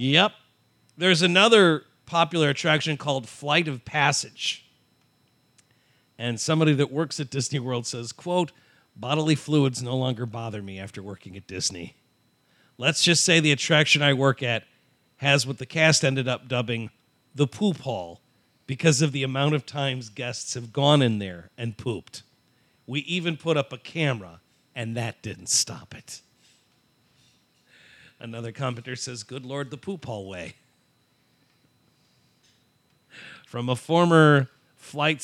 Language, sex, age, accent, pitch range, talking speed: English, male, 50-69, American, 125-165 Hz, 140 wpm